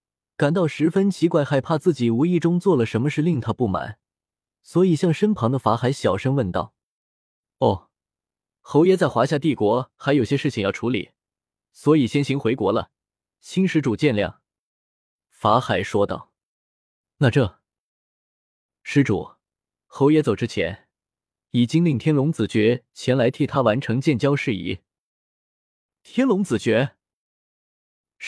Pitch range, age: 110-165 Hz, 20-39